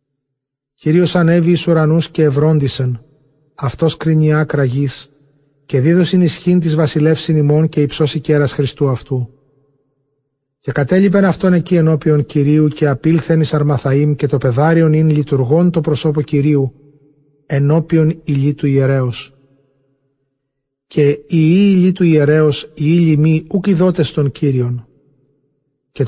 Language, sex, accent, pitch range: English, male, Greek, 140-160 Hz